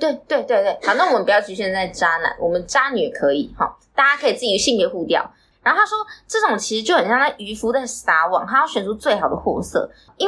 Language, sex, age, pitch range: Chinese, female, 20-39, 210-340 Hz